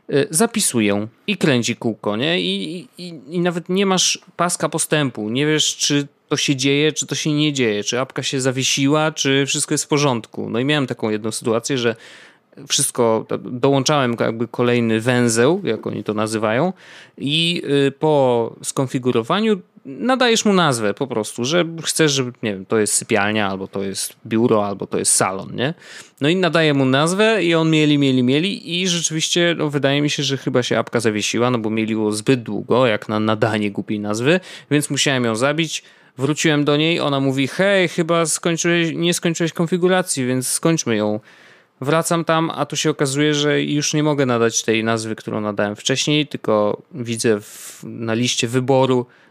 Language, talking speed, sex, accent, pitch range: Polish, 175 wpm, male, native, 115-160 Hz